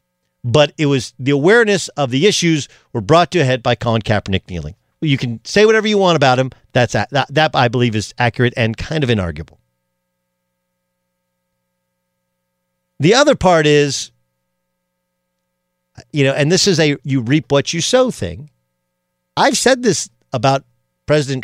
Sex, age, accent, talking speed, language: male, 50-69, American, 160 wpm, English